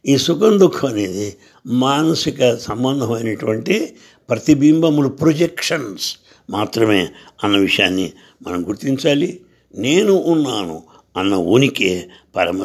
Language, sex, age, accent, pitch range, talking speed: English, male, 60-79, Indian, 110-155 Hz, 70 wpm